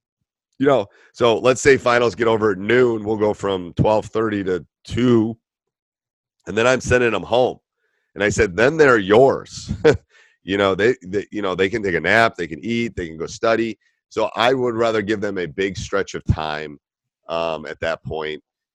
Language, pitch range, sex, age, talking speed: English, 85-110 Hz, male, 40-59, 195 wpm